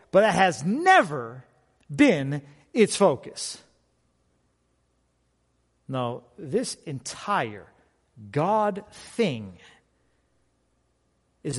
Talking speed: 65 wpm